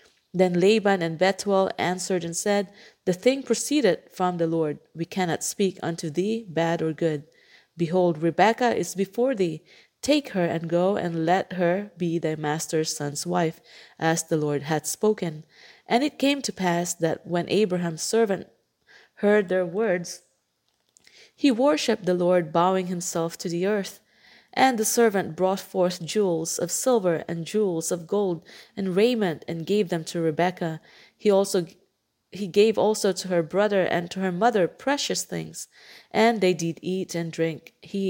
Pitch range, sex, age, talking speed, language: 170-205 Hz, female, 30-49, 160 wpm, English